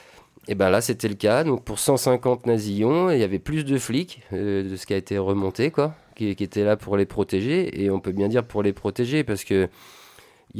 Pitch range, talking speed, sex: 90-115 Hz, 230 wpm, male